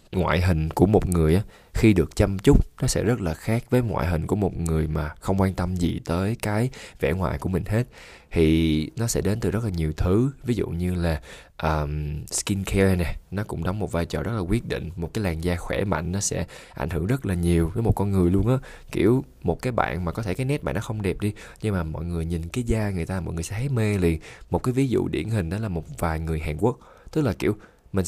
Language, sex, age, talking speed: Vietnamese, male, 20-39, 265 wpm